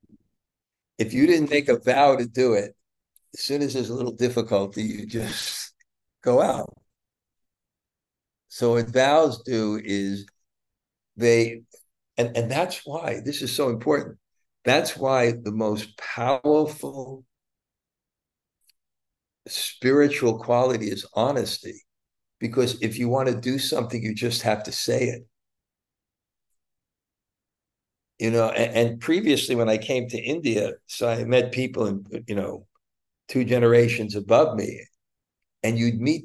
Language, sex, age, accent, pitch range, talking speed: English, male, 60-79, American, 110-130 Hz, 130 wpm